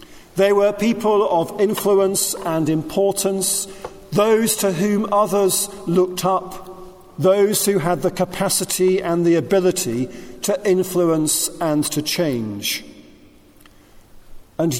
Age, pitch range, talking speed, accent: 50-69, 155-190 Hz, 110 wpm, British